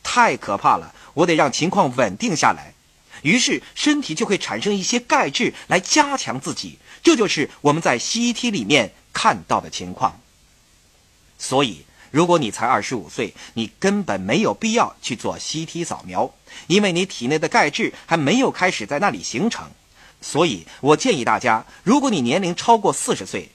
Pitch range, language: 150-235 Hz, Chinese